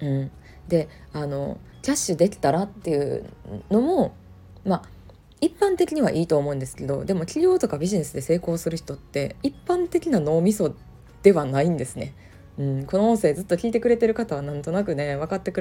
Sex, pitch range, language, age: female, 140-230 Hz, Japanese, 20-39